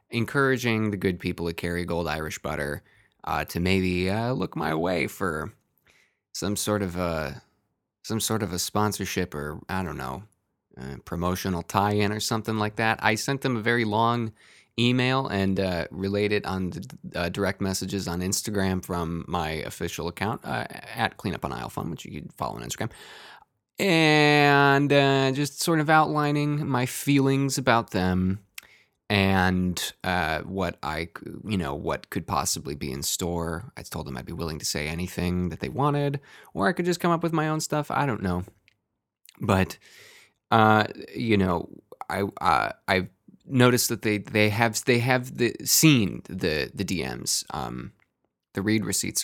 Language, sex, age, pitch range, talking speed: English, male, 20-39, 90-120 Hz, 170 wpm